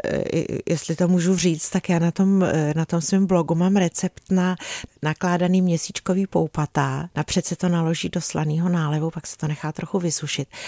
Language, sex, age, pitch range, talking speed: Czech, female, 40-59, 150-180 Hz, 175 wpm